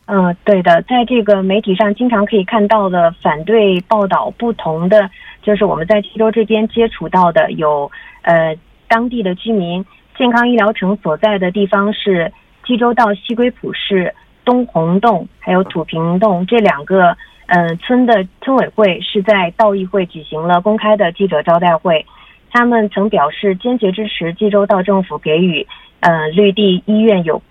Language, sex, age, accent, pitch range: Korean, female, 30-49, Chinese, 175-225 Hz